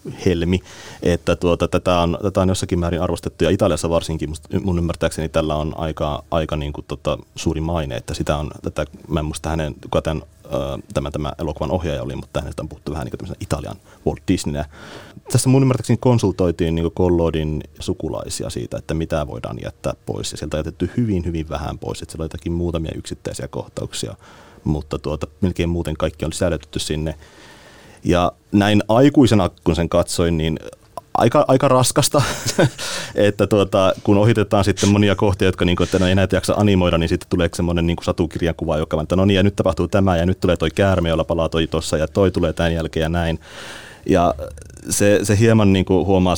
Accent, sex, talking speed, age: native, male, 185 wpm, 30-49